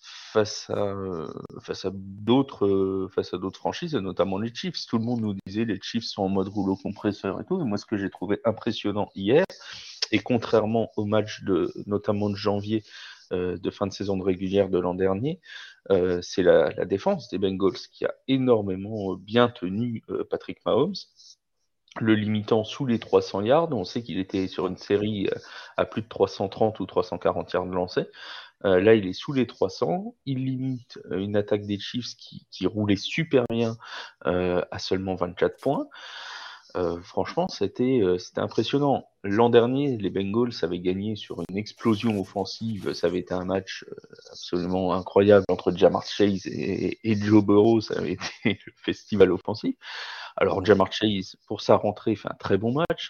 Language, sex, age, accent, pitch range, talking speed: French, male, 30-49, French, 95-115 Hz, 180 wpm